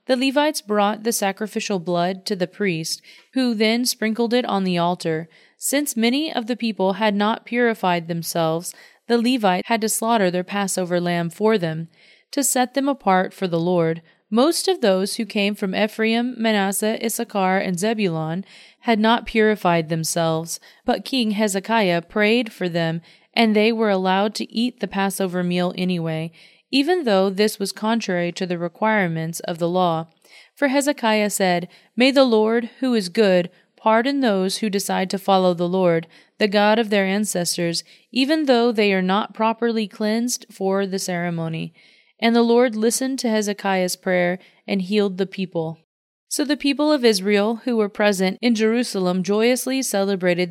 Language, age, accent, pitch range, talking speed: English, 30-49, American, 180-230 Hz, 165 wpm